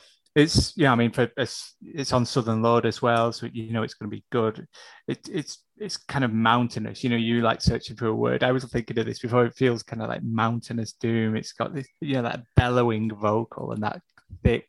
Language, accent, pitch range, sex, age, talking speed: English, British, 115-130 Hz, male, 20-39, 235 wpm